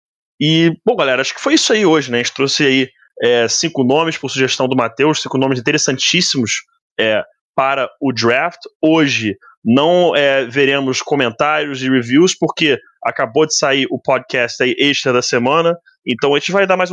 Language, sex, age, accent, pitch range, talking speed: Portuguese, male, 20-39, Brazilian, 130-170 Hz, 180 wpm